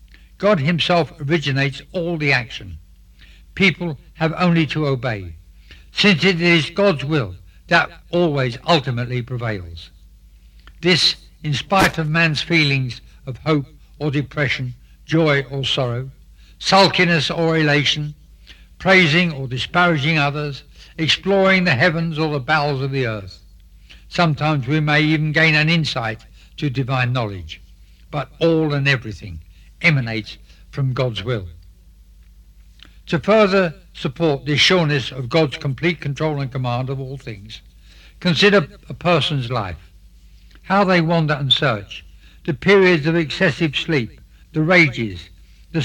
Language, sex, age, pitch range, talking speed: English, male, 60-79, 110-170 Hz, 130 wpm